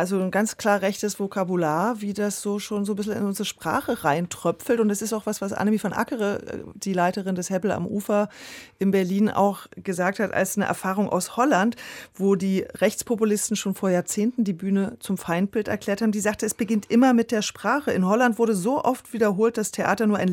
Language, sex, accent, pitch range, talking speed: German, female, German, 185-215 Hz, 215 wpm